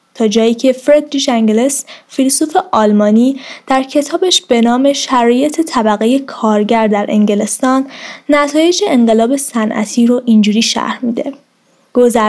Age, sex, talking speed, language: 10-29, female, 115 wpm, Persian